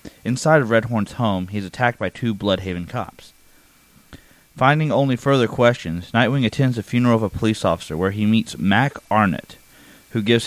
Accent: American